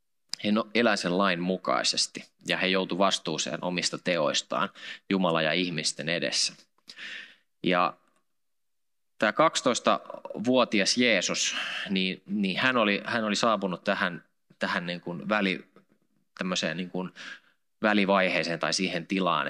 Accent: native